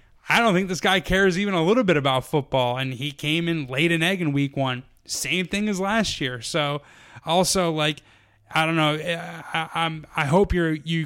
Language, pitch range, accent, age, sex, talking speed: English, 140-180 Hz, American, 20-39, male, 210 wpm